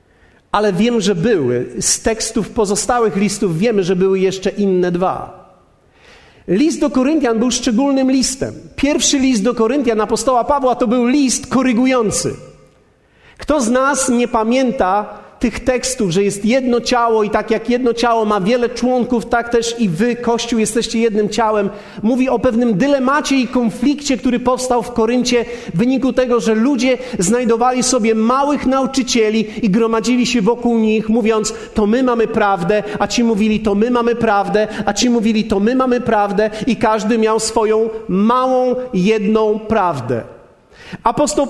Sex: male